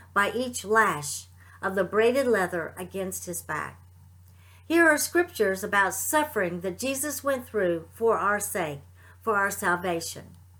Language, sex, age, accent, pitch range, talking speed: English, female, 50-69, American, 170-255 Hz, 140 wpm